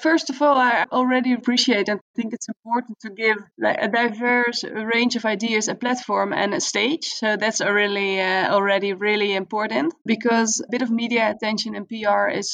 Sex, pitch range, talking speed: female, 200-230 Hz, 185 wpm